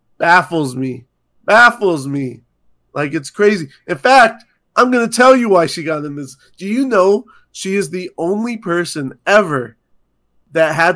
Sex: male